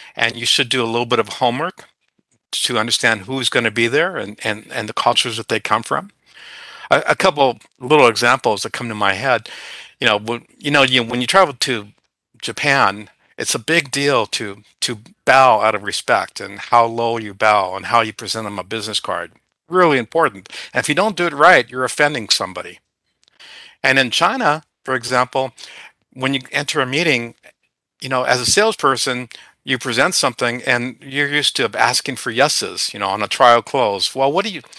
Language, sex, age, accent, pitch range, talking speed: English, male, 50-69, American, 115-140 Hz, 200 wpm